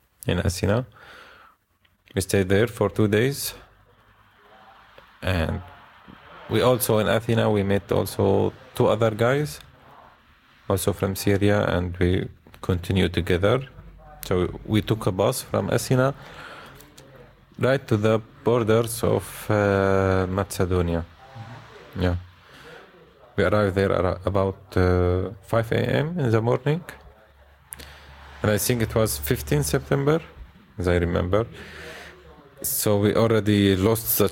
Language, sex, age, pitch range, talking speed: German, male, 30-49, 90-115 Hz, 115 wpm